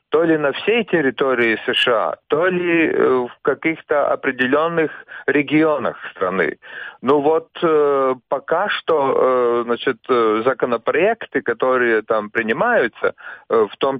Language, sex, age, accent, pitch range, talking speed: Russian, male, 40-59, native, 115-155 Hz, 105 wpm